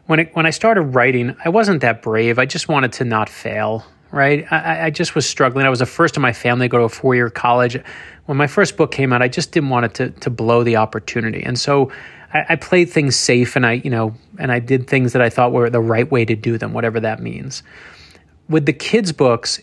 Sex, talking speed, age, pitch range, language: male, 255 wpm, 30-49, 115-155 Hz, English